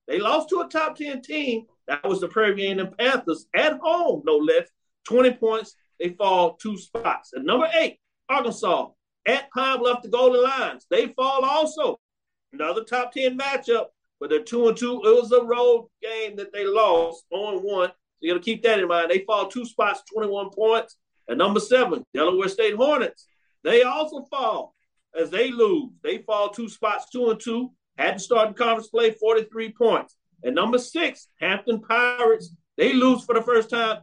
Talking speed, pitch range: 185 wpm, 200-305 Hz